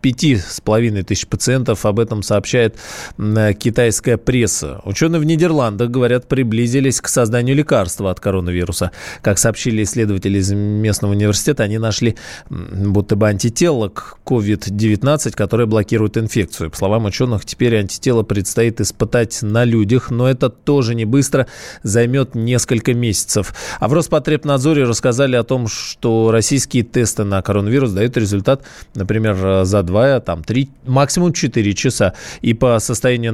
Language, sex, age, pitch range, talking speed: Russian, male, 20-39, 105-125 Hz, 135 wpm